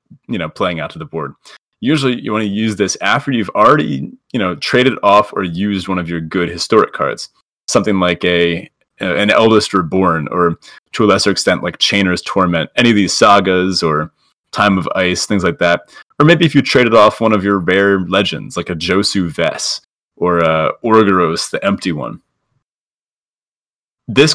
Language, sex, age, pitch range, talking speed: English, male, 30-49, 90-115 Hz, 185 wpm